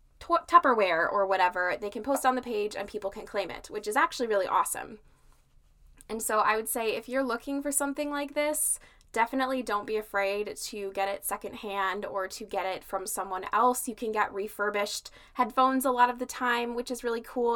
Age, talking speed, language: 20-39, 205 wpm, English